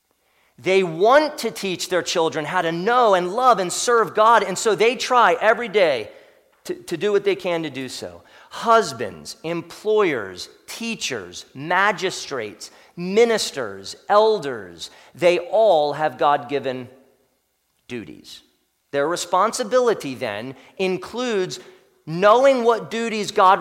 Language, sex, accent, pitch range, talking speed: English, male, American, 175-240 Hz, 120 wpm